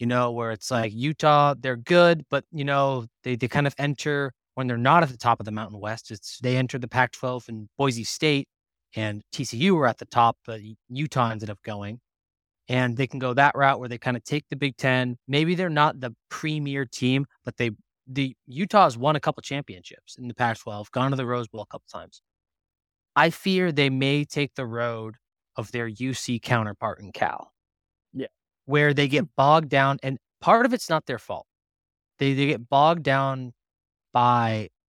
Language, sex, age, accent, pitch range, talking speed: English, male, 20-39, American, 110-140 Hz, 200 wpm